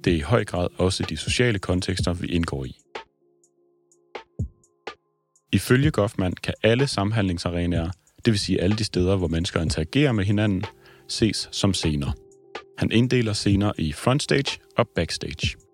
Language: Danish